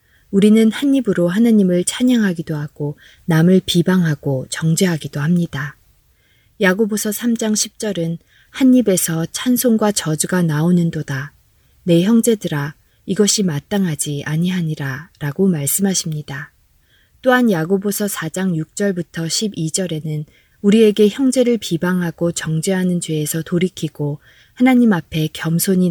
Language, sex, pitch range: Korean, female, 155-205 Hz